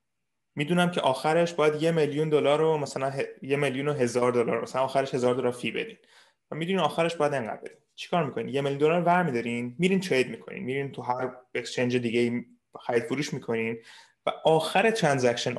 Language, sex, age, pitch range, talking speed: Persian, male, 20-39, 120-155 Hz, 175 wpm